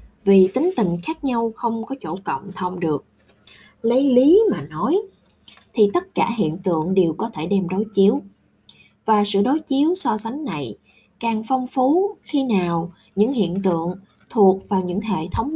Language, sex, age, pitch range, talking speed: Vietnamese, female, 20-39, 185-230 Hz, 175 wpm